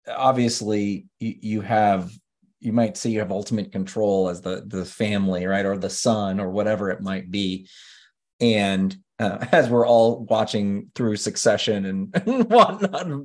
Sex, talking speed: male, 150 wpm